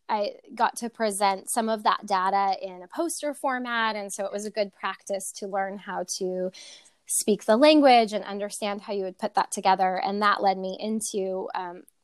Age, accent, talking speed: 10-29, American, 200 wpm